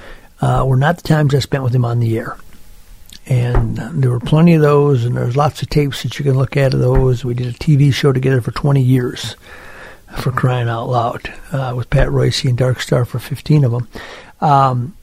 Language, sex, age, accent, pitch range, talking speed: English, male, 60-79, American, 125-145 Hz, 225 wpm